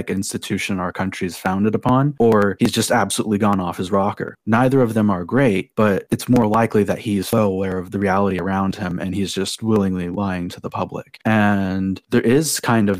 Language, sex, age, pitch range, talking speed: English, male, 20-39, 95-115 Hz, 210 wpm